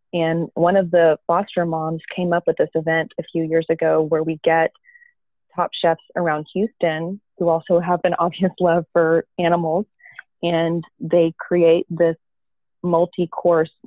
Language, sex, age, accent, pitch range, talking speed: English, female, 20-39, American, 165-180 Hz, 150 wpm